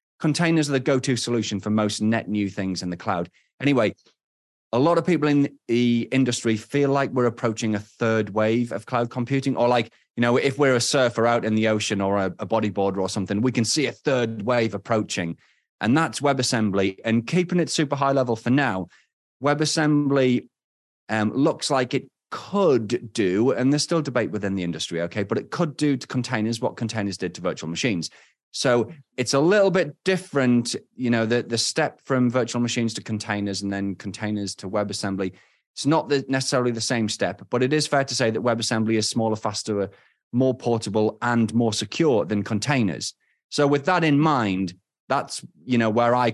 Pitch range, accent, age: 105-130 Hz, British, 30-49